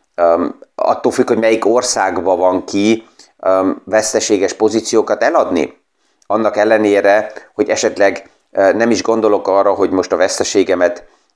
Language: Hungarian